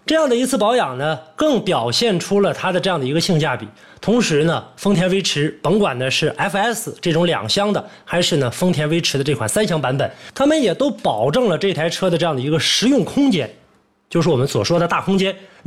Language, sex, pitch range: Chinese, male, 150-225 Hz